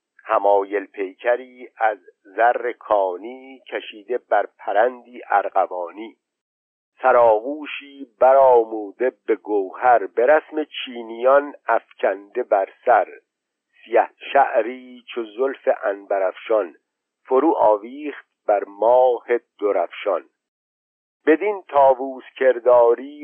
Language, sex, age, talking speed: Persian, male, 50-69, 80 wpm